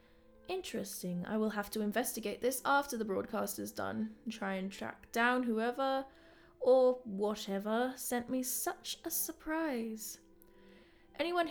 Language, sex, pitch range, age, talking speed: English, female, 200-270 Hz, 10-29, 130 wpm